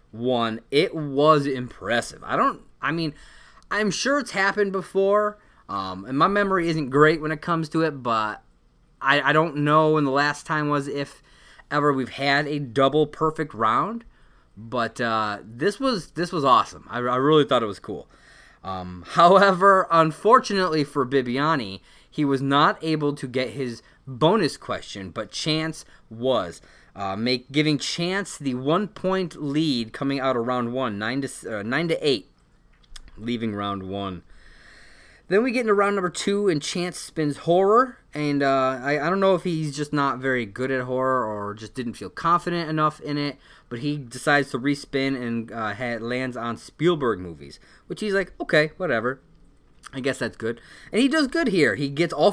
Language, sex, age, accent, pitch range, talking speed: English, male, 20-39, American, 125-170 Hz, 180 wpm